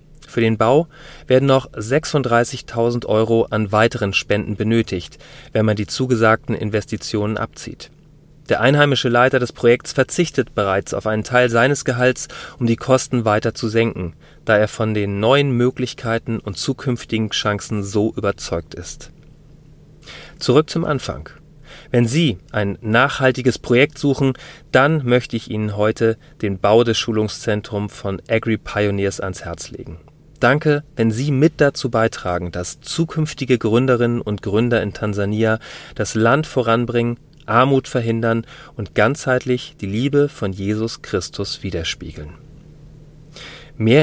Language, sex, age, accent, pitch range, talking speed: German, male, 30-49, German, 105-135 Hz, 130 wpm